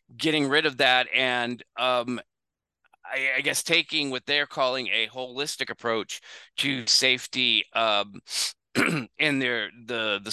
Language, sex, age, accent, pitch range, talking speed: English, male, 30-49, American, 120-150 Hz, 135 wpm